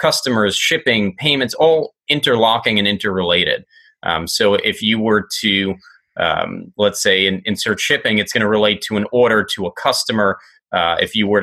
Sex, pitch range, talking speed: male, 95-110 Hz, 175 wpm